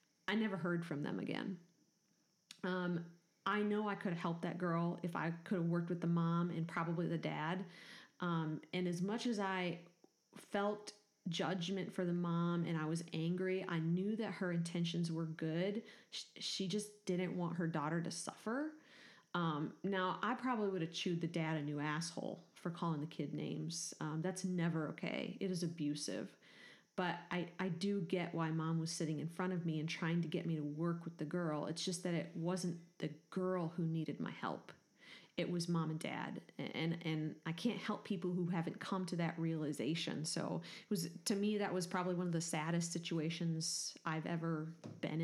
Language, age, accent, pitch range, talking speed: English, 30-49, American, 165-190 Hz, 200 wpm